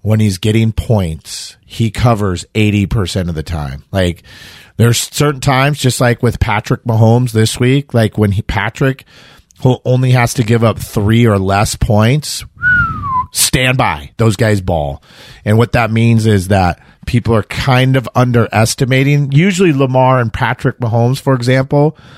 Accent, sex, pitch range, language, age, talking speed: American, male, 100-125 Hz, English, 40-59, 155 wpm